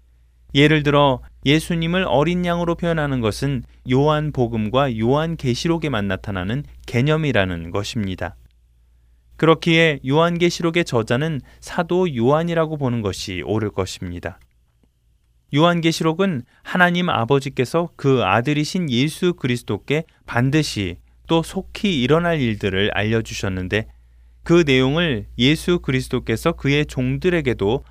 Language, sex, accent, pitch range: Korean, male, native, 95-155 Hz